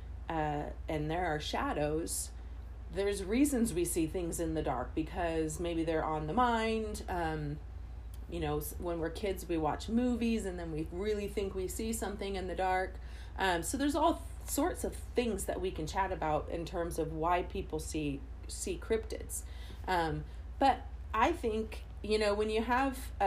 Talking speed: 175 wpm